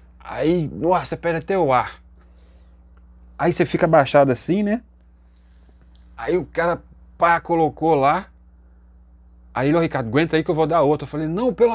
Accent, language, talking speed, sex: Brazilian, Portuguese, 170 wpm, male